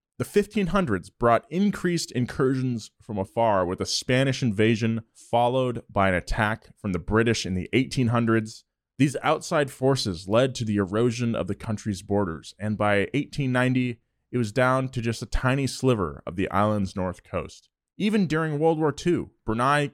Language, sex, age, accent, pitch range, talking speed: English, male, 20-39, American, 105-130 Hz, 165 wpm